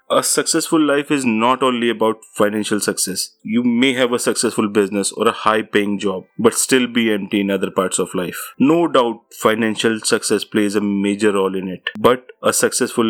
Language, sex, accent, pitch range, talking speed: English, male, Indian, 105-120 Hz, 190 wpm